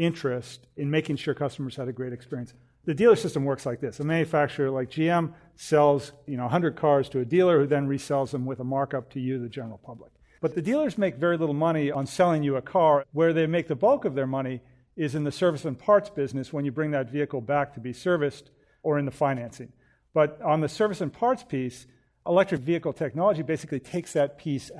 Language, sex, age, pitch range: English, male, 40-59, 135-160 Hz